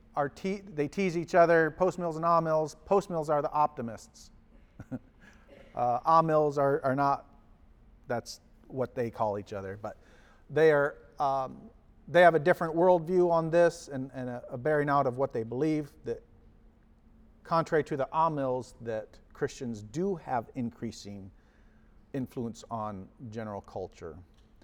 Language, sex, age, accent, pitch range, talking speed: English, male, 40-59, American, 115-175 Hz, 150 wpm